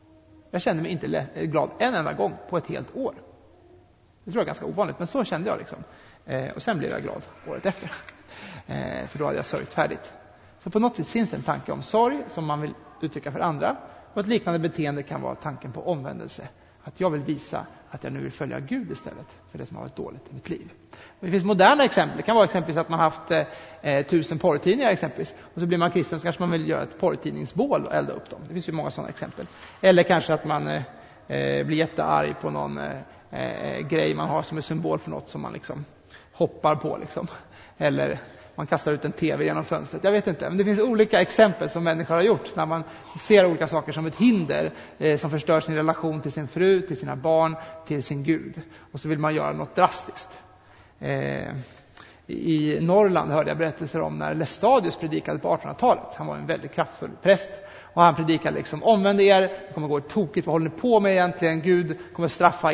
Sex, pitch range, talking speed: male, 140-180 Hz, 215 wpm